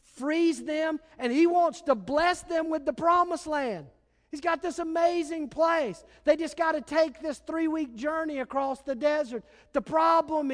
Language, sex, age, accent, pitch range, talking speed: English, male, 40-59, American, 235-310 Hz, 170 wpm